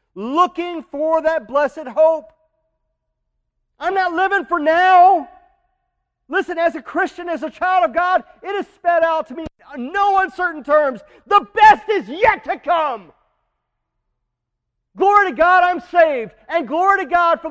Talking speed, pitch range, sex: 155 wpm, 245-370 Hz, male